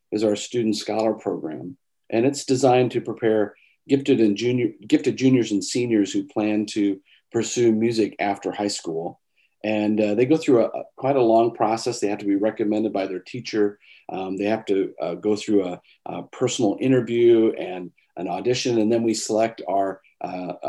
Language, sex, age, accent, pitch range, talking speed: English, male, 40-59, American, 100-115 Hz, 185 wpm